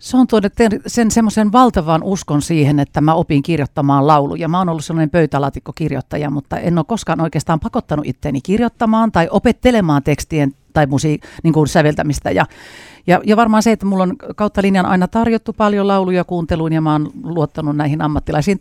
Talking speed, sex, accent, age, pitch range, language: 175 wpm, female, native, 50-69, 150-195 Hz, Finnish